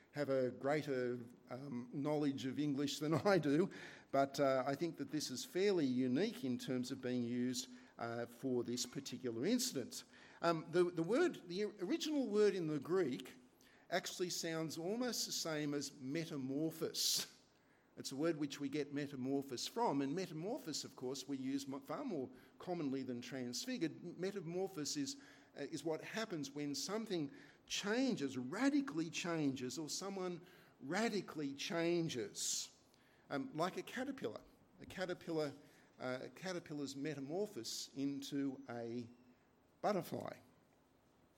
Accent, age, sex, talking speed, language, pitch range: Australian, 50-69, male, 135 wpm, English, 135-180 Hz